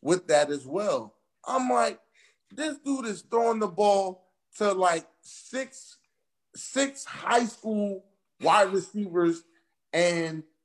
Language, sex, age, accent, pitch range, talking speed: English, male, 30-49, American, 170-250 Hz, 120 wpm